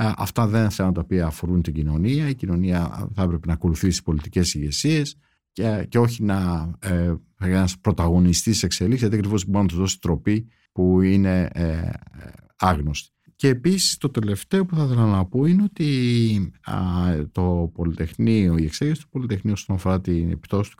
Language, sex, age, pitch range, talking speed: Greek, male, 60-79, 85-120 Hz, 175 wpm